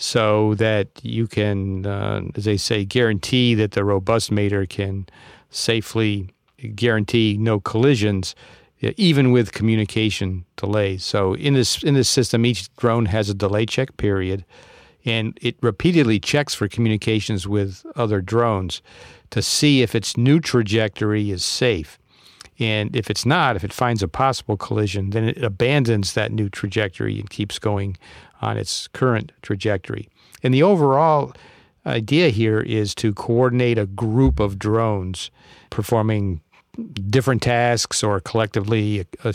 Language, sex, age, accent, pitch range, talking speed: English, male, 50-69, American, 105-120 Hz, 140 wpm